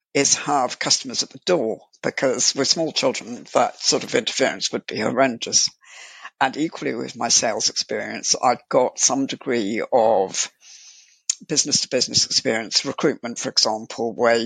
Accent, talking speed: British, 140 wpm